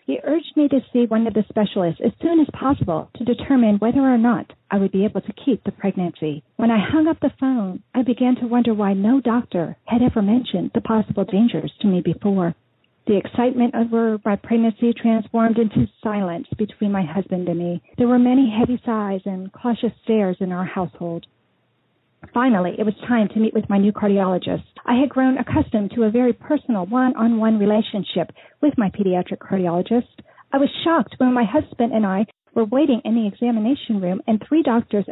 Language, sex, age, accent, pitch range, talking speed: English, female, 40-59, American, 200-250 Hz, 195 wpm